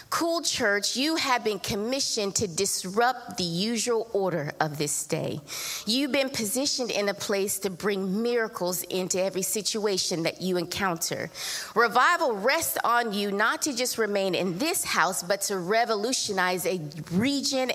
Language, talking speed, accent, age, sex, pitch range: English, 150 wpm, American, 30-49, female, 185-245 Hz